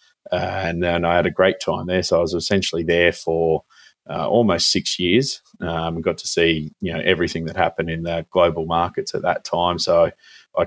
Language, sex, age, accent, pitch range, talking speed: English, male, 20-39, Australian, 85-95 Hz, 210 wpm